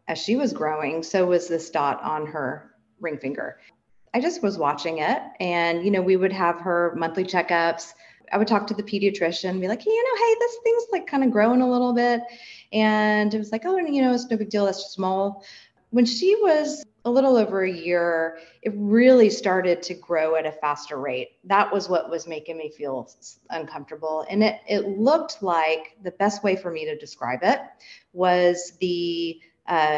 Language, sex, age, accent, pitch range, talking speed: English, female, 30-49, American, 165-225 Hz, 205 wpm